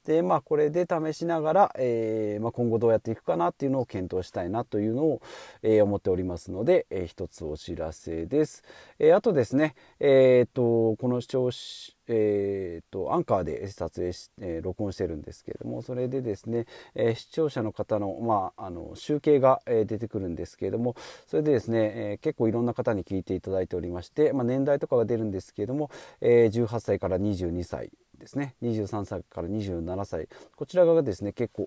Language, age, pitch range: Japanese, 40-59, 95-125 Hz